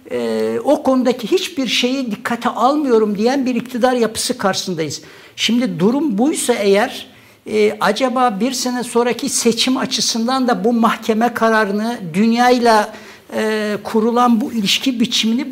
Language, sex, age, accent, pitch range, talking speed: Turkish, male, 60-79, native, 215-250 Hz, 130 wpm